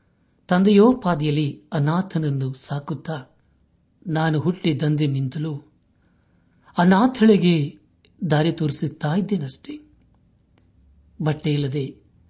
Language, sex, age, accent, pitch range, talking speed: Kannada, male, 60-79, native, 135-175 Hz, 60 wpm